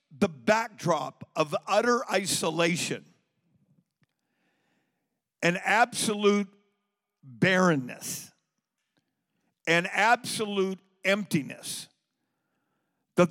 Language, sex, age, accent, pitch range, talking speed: English, male, 50-69, American, 165-210 Hz, 55 wpm